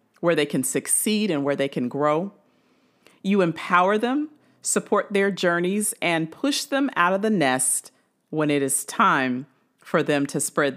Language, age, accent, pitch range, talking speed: English, 40-59, American, 140-200 Hz, 165 wpm